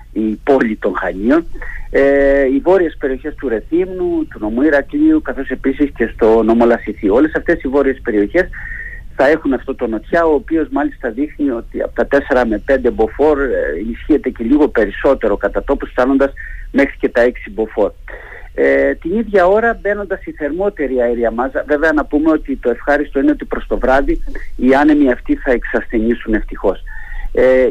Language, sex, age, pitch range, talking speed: Greek, male, 50-69, 130-200 Hz, 165 wpm